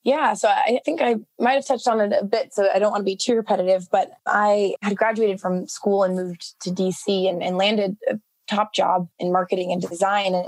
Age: 20-39